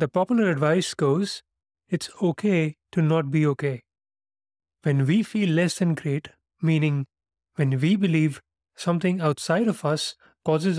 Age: 30-49